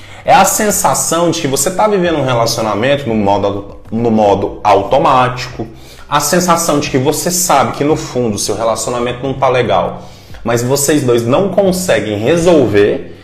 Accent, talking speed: Brazilian, 160 wpm